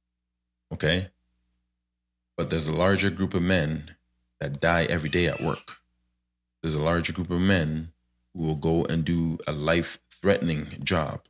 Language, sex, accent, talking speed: English, male, American, 155 wpm